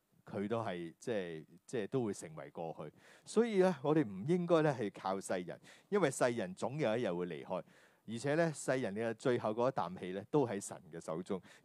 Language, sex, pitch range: Chinese, male, 95-130 Hz